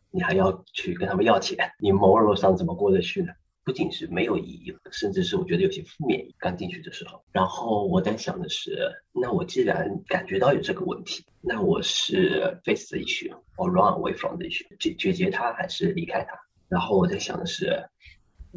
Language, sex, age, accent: Chinese, male, 30-49, native